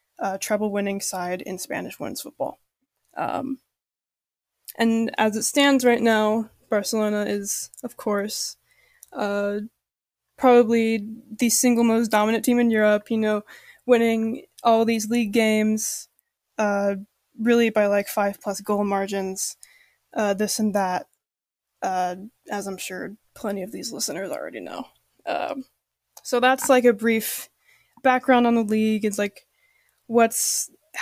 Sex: female